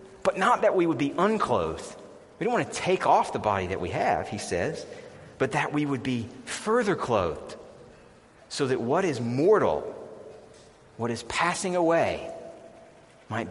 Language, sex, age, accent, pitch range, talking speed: English, male, 30-49, American, 100-155 Hz, 165 wpm